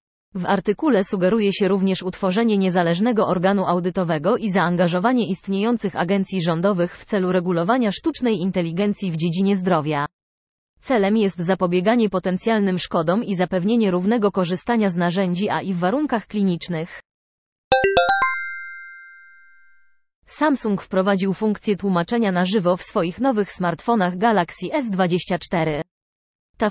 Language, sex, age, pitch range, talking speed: Polish, female, 20-39, 175-220 Hz, 115 wpm